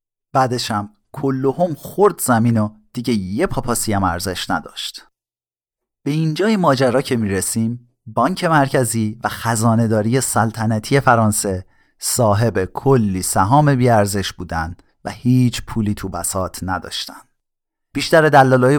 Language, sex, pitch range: Persian, male, 105-140 Hz